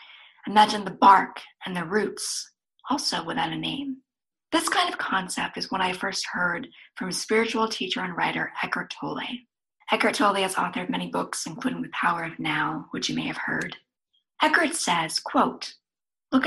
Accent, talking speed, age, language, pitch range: American, 170 wpm, 40-59, English, 200-260 Hz